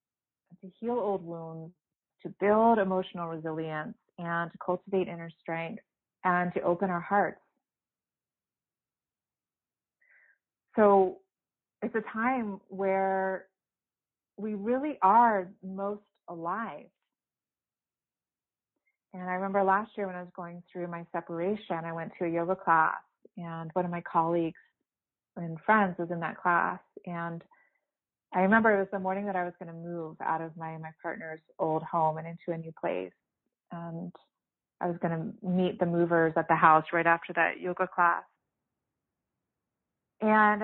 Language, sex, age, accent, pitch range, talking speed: English, female, 30-49, American, 165-195 Hz, 145 wpm